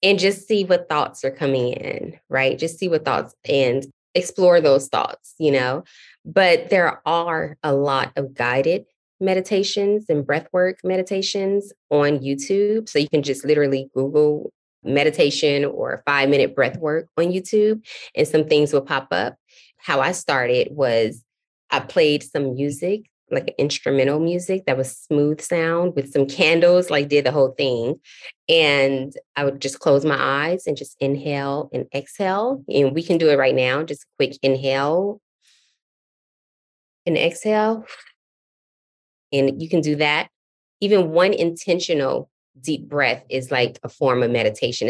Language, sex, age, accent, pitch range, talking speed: English, female, 20-39, American, 140-195 Hz, 155 wpm